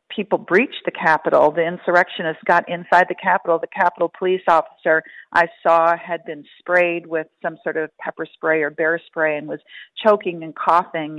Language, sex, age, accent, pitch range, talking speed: English, female, 40-59, American, 160-185 Hz, 175 wpm